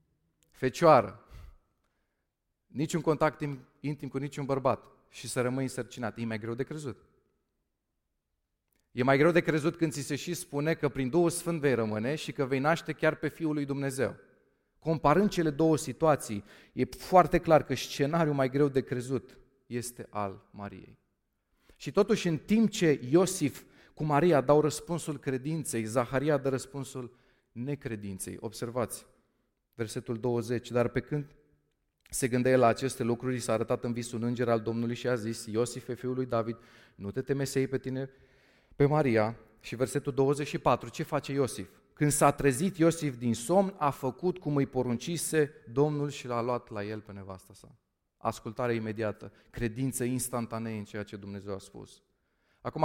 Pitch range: 120-155 Hz